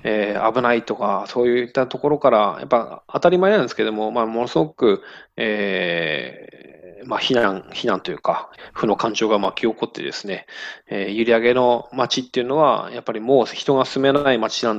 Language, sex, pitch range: Japanese, male, 110-130 Hz